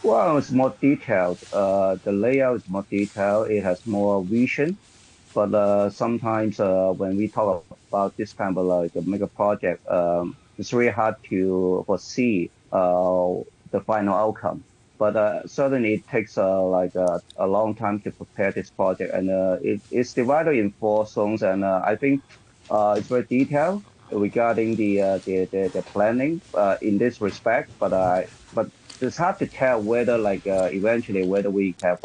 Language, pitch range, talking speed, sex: English, 95-115 Hz, 180 wpm, male